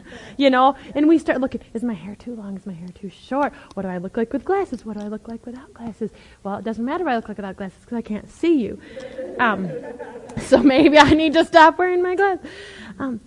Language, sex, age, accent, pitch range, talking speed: English, female, 30-49, American, 210-265 Hz, 255 wpm